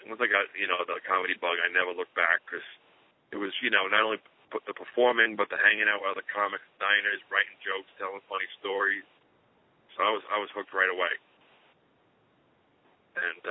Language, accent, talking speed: English, American, 195 wpm